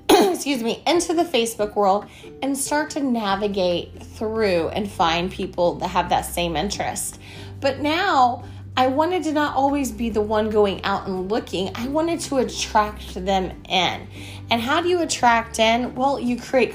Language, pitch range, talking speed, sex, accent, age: English, 210-290 Hz, 170 wpm, female, American, 30-49